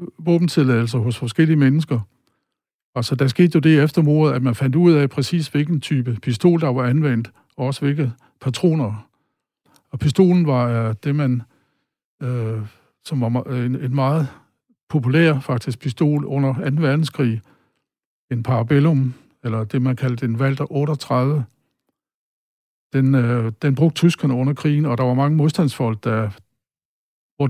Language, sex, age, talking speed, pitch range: Danish, male, 60-79, 145 wpm, 125-155 Hz